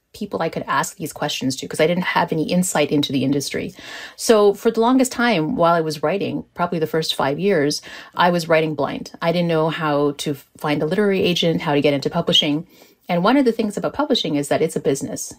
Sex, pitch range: female, 160-215 Hz